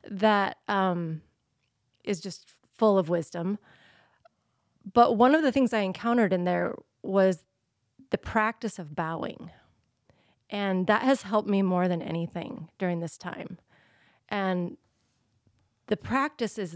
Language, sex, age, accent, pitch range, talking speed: English, female, 30-49, American, 170-215 Hz, 130 wpm